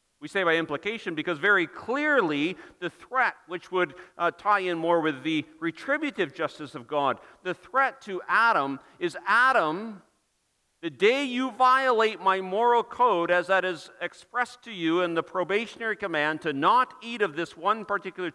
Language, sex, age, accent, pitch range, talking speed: English, male, 50-69, American, 165-235 Hz, 165 wpm